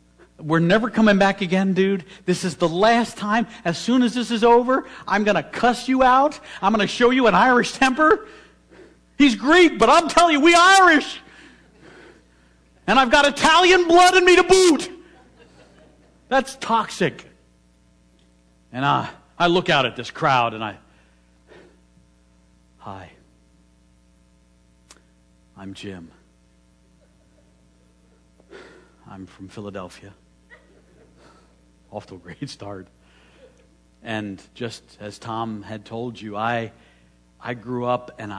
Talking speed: 130 wpm